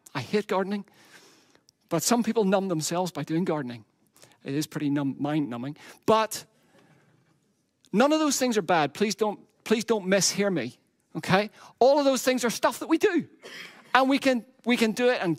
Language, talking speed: English, 185 wpm